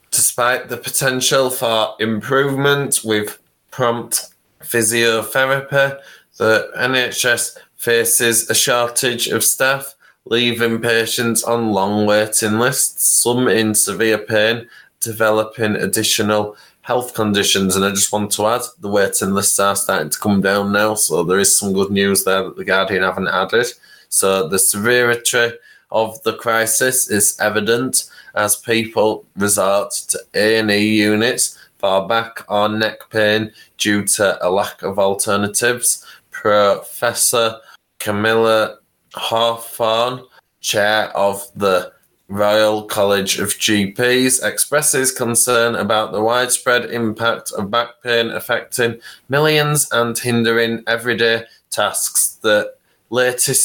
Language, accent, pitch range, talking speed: English, British, 105-120 Hz, 120 wpm